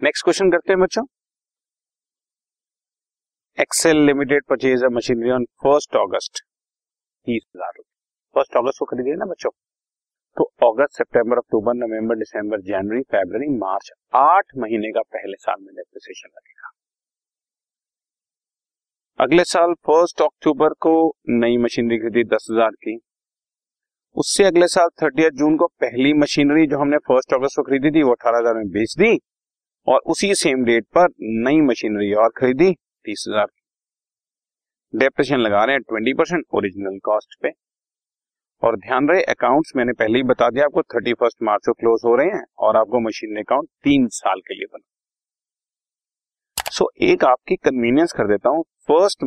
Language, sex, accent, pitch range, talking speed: Hindi, male, native, 115-175 Hz, 150 wpm